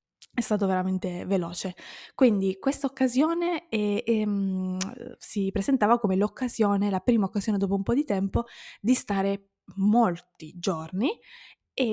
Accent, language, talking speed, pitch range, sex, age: native, Italian, 120 wpm, 185-225 Hz, female, 20-39